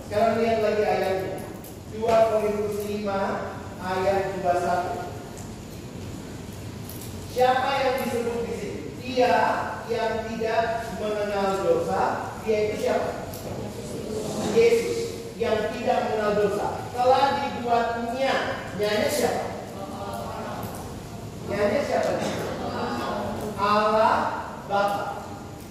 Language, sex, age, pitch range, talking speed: Indonesian, male, 30-49, 195-235 Hz, 75 wpm